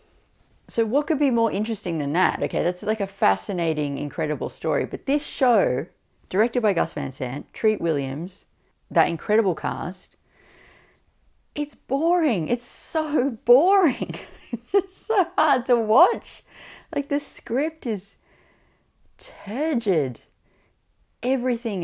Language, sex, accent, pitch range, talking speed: English, female, Australian, 140-230 Hz, 125 wpm